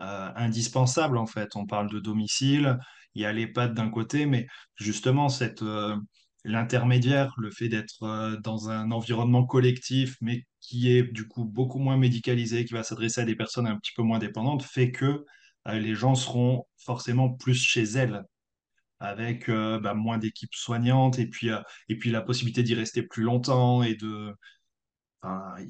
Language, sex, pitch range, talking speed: French, male, 110-125 Hz, 175 wpm